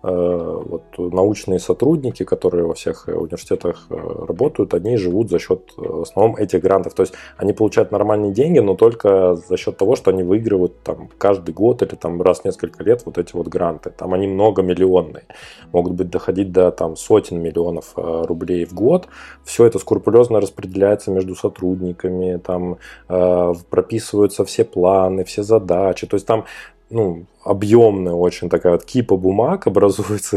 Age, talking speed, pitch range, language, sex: 20-39, 155 wpm, 90-110 Hz, Russian, male